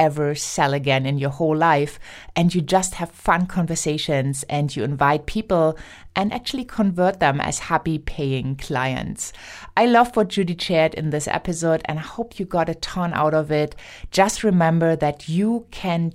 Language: English